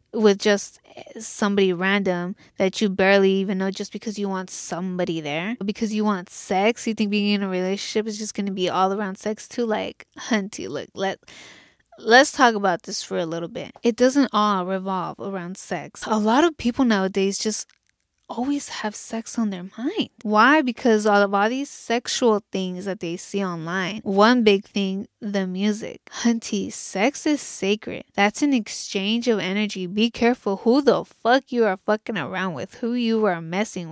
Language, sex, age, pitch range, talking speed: English, female, 20-39, 195-230 Hz, 185 wpm